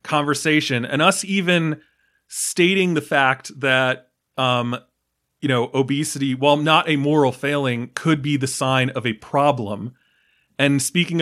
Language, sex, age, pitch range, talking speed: English, male, 30-49, 125-155 Hz, 140 wpm